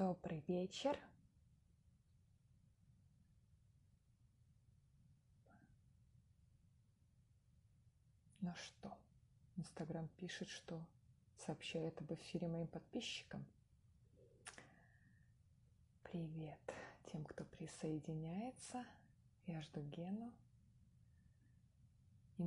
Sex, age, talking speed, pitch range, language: female, 20-39, 55 wpm, 130-175 Hz, Russian